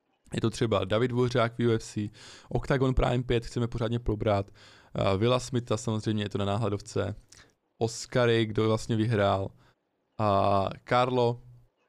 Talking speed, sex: 130 wpm, male